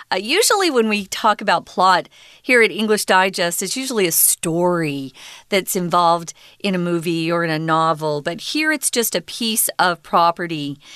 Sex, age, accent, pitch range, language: female, 40-59, American, 180-270 Hz, Chinese